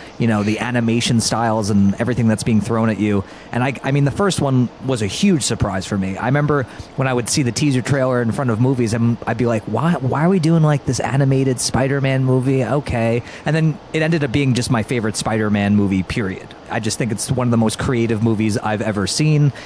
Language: English